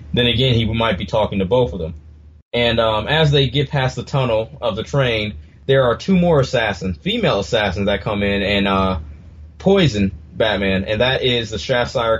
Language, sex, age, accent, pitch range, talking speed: English, male, 30-49, American, 100-130 Hz, 195 wpm